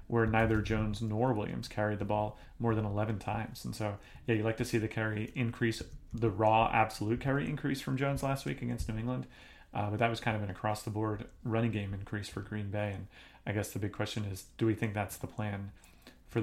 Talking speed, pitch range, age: 225 wpm, 105-120 Hz, 30-49